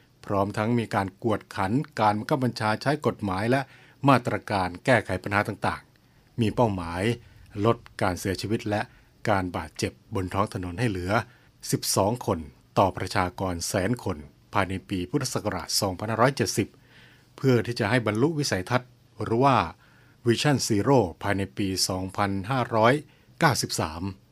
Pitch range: 100-125 Hz